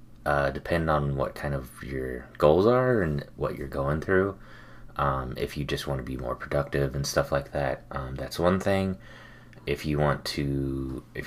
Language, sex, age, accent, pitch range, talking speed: English, male, 30-49, American, 70-85 Hz, 185 wpm